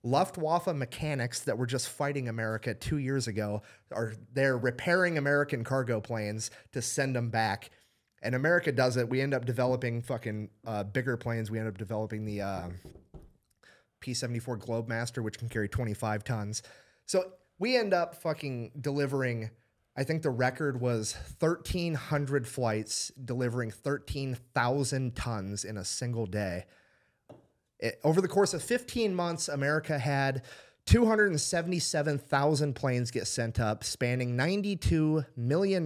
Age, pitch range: 30-49, 115-145 Hz